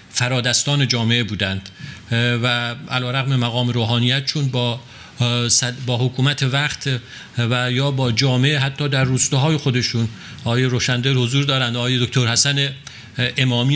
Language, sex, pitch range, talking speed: Persian, male, 120-150 Hz, 135 wpm